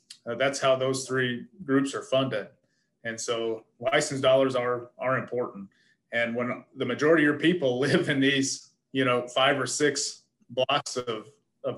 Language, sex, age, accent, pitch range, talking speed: English, male, 30-49, American, 120-135 Hz, 170 wpm